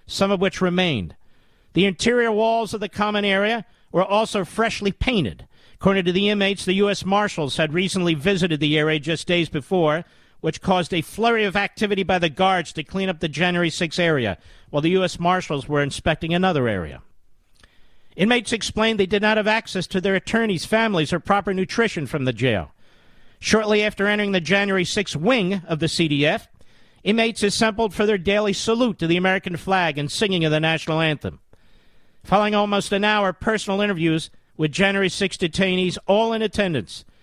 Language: English